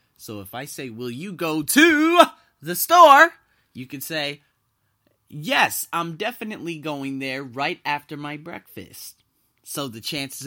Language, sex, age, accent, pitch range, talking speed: English, male, 30-49, American, 105-150 Hz, 145 wpm